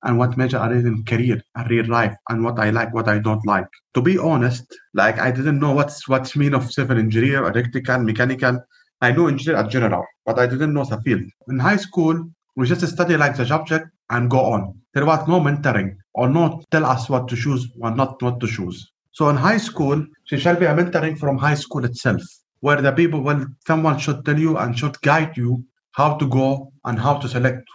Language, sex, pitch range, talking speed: English, male, 125-155 Hz, 225 wpm